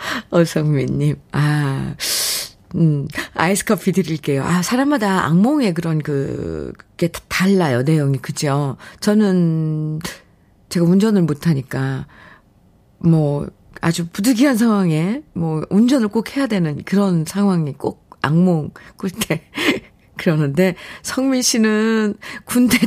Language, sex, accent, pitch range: Korean, female, native, 165-230 Hz